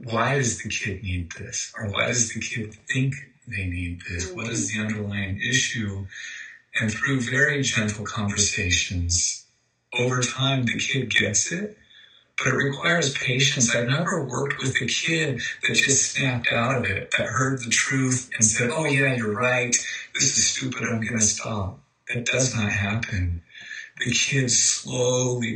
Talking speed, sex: 165 wpm, male